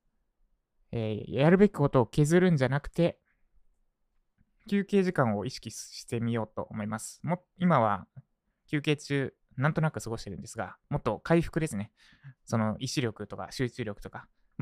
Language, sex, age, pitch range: Japanese, male, 20-39, 110-155 Hz